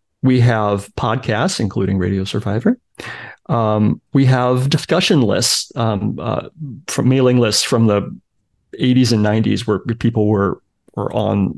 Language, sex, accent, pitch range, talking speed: English, male, American, 110-135 Hz, 135 wpm